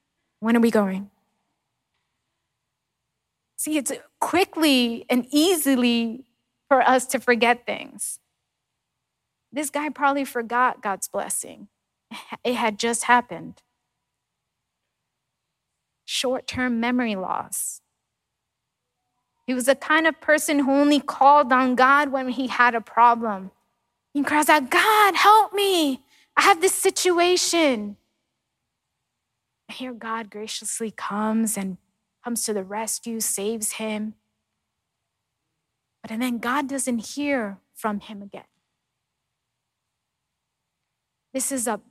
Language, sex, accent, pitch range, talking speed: Spanish, female, American, 220-285 Hz, 110 wpm